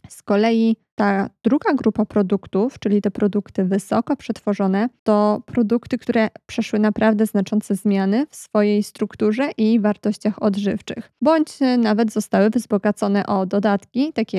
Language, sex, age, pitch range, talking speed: Polish, female, 20-39, 205-230 Hz, 130 wpm